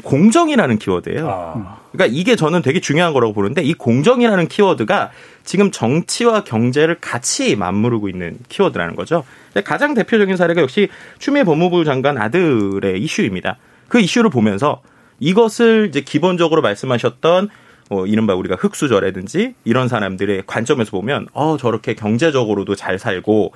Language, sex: Korean, male